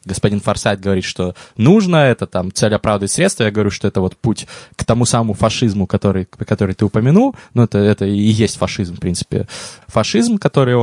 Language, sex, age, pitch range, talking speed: Russian, male, 20-39, 100-135 Hz, 190 wpm